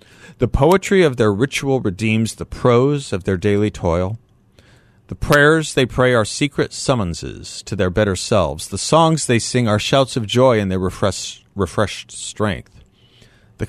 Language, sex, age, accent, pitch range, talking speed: English, male, 40-59, American, 100-130 Hz, 160 wpm